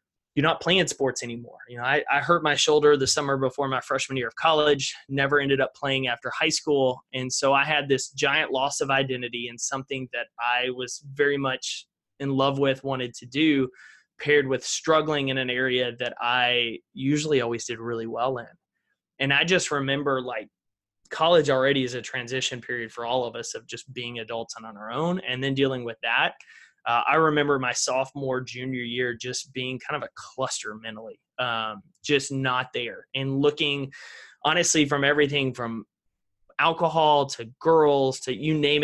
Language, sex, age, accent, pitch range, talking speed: English, male, 20-39, American, 125-150 Hz, 185 wpm